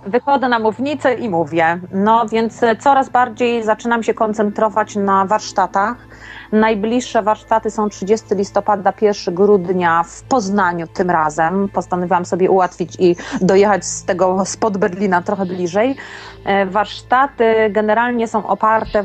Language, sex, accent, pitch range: Polish, female, native, 185-215 Hz